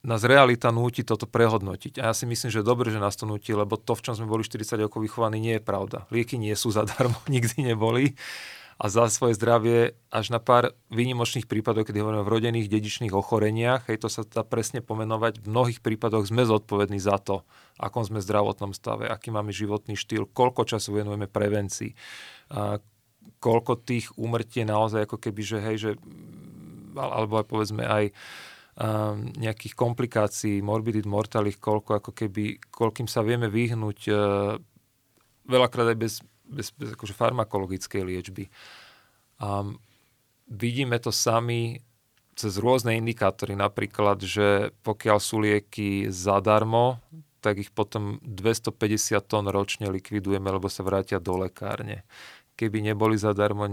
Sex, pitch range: male, 105-115 Hz